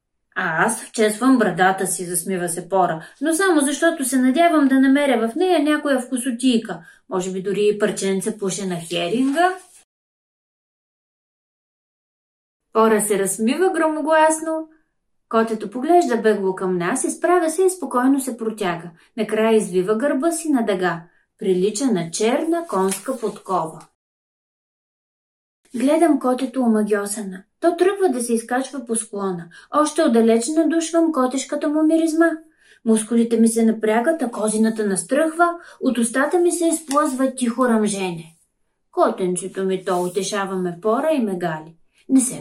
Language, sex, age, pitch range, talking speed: Bulgarian, female, 30-49, 205-320 Hz, 125 wpm